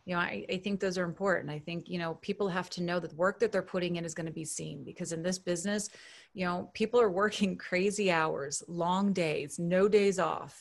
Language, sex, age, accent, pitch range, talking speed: English, female, 30-49, American, 170-210 Hz, 250 wpm